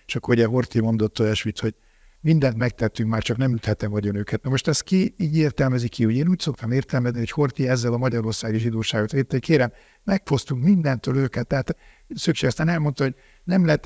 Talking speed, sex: 200 wpm, male